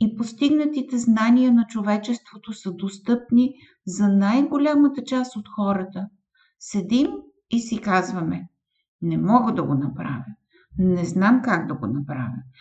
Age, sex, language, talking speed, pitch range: 50-69, female, Bulgarian, 135 wpm, 180-255 Hz